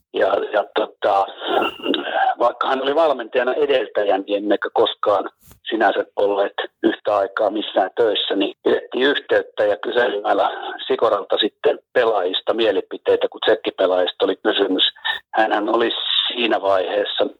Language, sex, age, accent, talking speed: Finnish, male, 60-79, native, 115 wpm